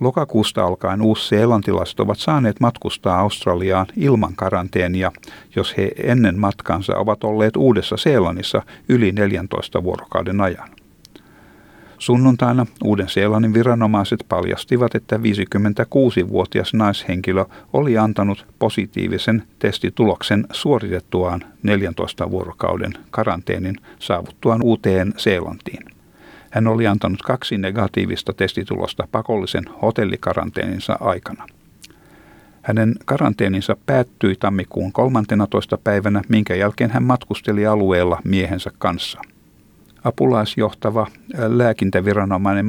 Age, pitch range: 60-79, 95-115 Hz